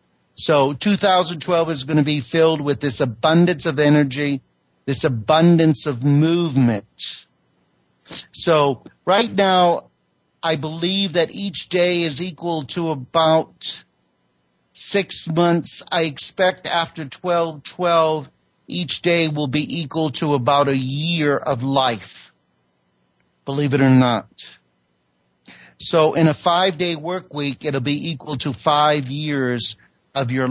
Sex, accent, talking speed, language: male, American, 125 wpm, English